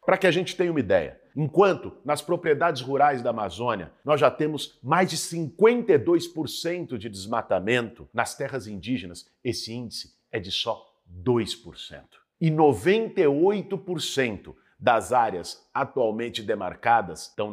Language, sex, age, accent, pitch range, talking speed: Portuguese, male, 50-69, Brazilian, 110-170 Hz, 125 wpm